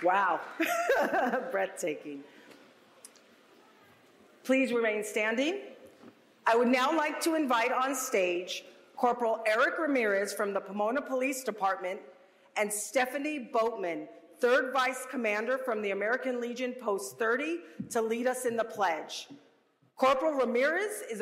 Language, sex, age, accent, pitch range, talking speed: English, female, 40-59, American, 205-260 Hz, 120 wpm